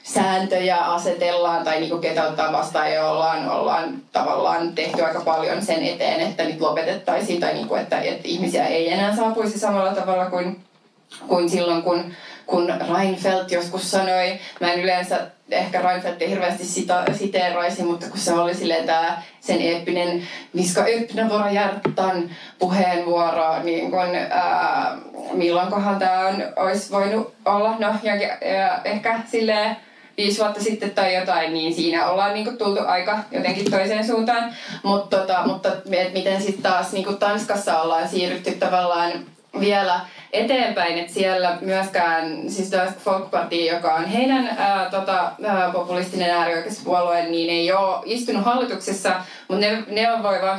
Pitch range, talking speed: 175-205 Hz, 135 wpm